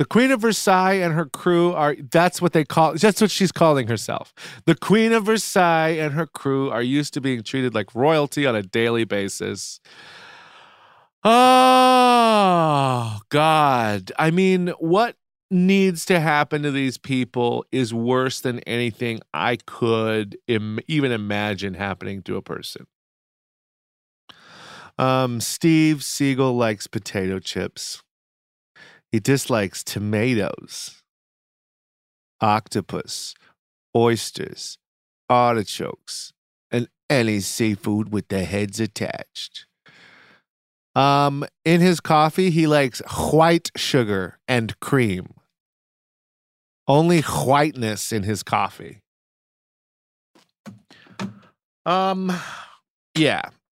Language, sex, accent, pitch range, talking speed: English, male, American, 115-170 Hz, 105 wpm